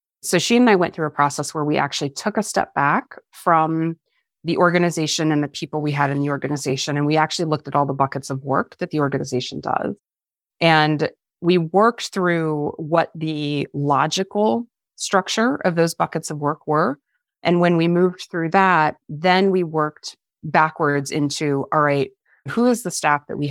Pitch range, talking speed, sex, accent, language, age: 145-170 Hz, 185 wpm, female, American, English, 30-49